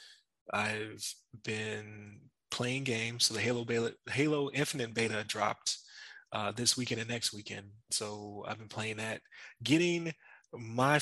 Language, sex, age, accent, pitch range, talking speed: English, male, 20-39, American, 110-140 Hz, 130 wpm